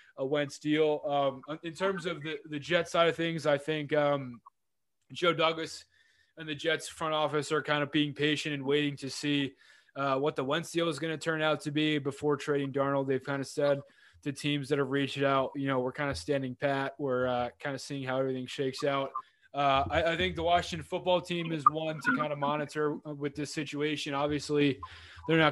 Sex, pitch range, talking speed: male, 140-155 Hz, 220 wpm